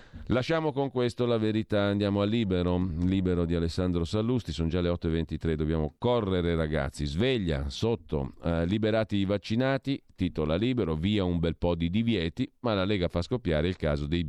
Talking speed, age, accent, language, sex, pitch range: 170 wpm, 40-59, native, Italian, male, 80-100 Hz